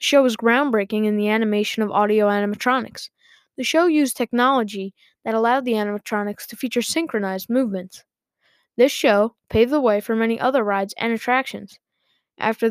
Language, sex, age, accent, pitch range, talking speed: English, female, 10-29, American, 205-240 Hz, 160 wpm